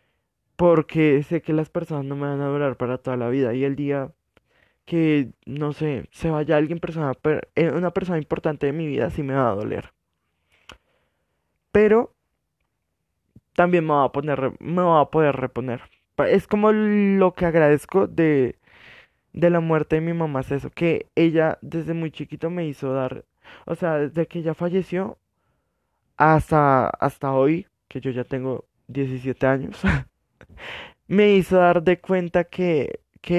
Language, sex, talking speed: Spanish, male, 160 wpm